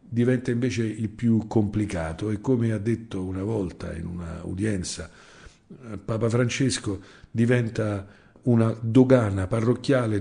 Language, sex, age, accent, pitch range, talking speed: Italian, male, 50-69, native, 95-120 Hz, 120 wpm